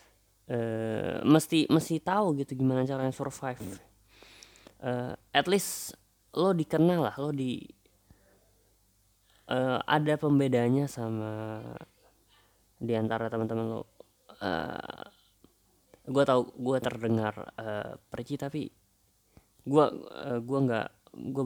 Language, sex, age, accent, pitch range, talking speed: Indonesian, female, 20-39, native, 100-130 Hz, 100 wpm